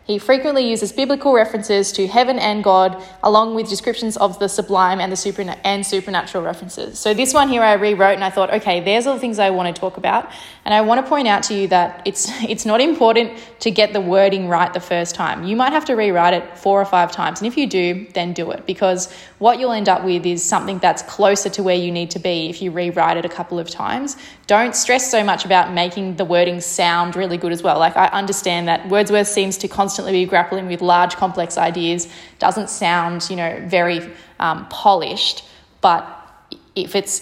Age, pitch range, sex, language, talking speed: 10-29, 180-210 Hz, female, English, 220 wpm